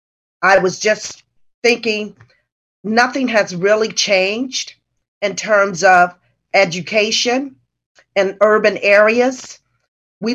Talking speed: 95 wpm